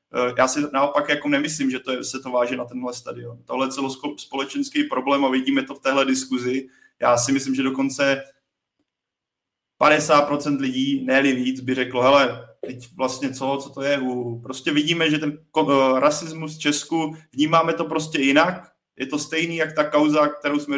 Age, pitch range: 20-39, 130-145 Hz